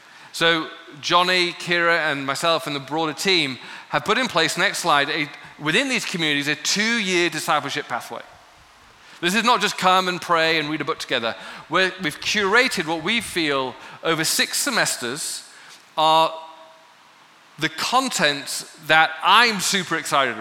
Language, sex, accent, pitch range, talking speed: English, male, British, 145-185 Hz, 145 wpm